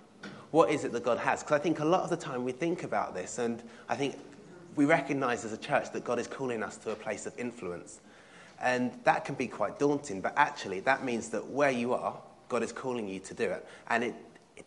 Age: 30-49